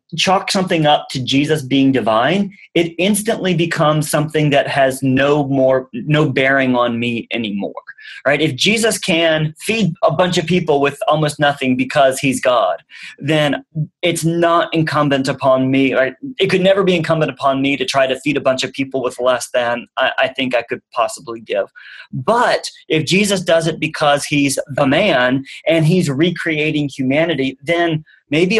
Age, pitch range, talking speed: 30-49, 135-170 Hz, 170 wpm